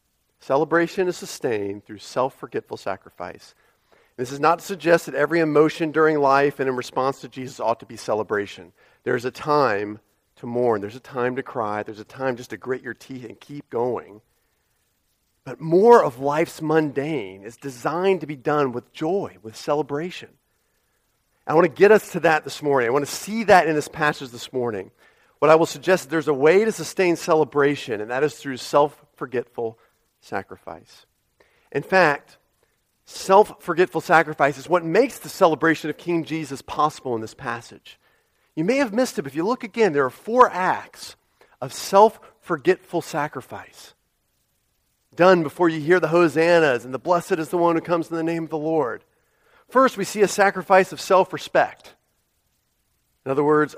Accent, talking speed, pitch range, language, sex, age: American, 175 wpm, 130-175 Hz, English, male, 40-59